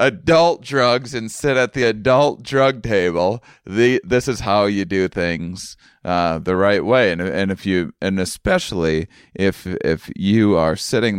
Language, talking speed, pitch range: English, 165 wpm, 85-110 Hz